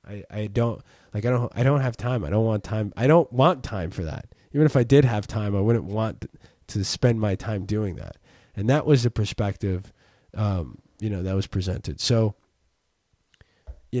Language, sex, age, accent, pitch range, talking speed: English, male, 20-39, American, 105-140 Hz, 205 wpm